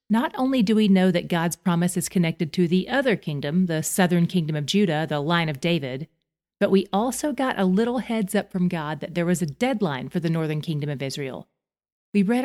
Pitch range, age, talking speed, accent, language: 160-200 Hz, 40-59, 220 wpm, American, English